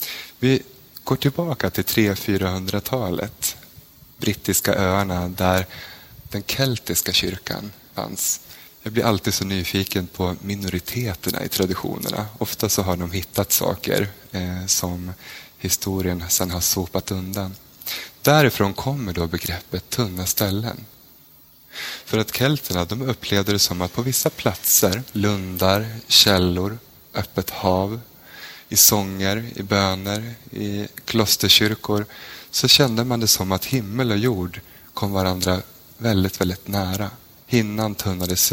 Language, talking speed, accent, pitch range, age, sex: Swedish, 120 wpm, native, 90-115 Hz, 20-39, male